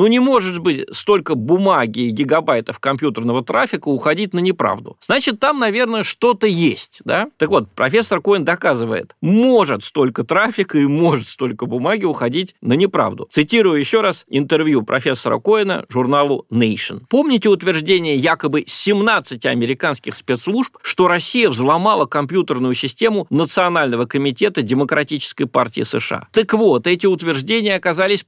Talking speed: 135 wpm